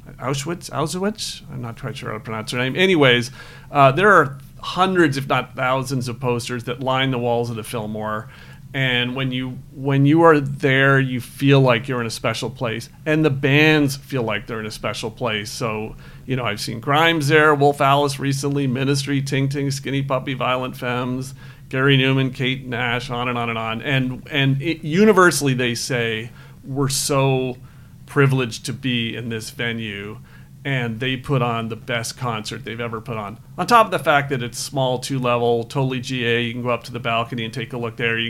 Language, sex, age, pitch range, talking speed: English, male, 40-59, 120-140 Hz, 200 wpm